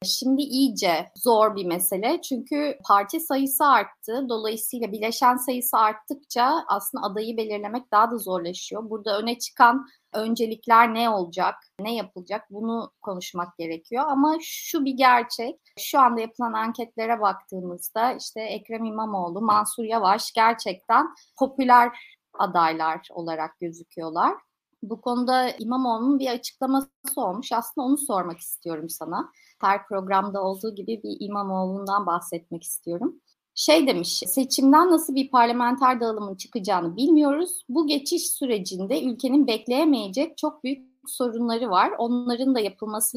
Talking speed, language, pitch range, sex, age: 125 wpm, Turkish, 200-270 Hz, female, 30-49